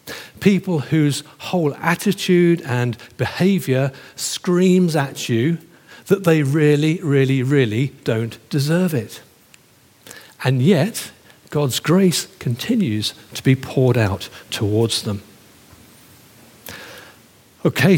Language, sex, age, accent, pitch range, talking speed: English, male, 50-69, British, 125-165 Hz, 95 wpm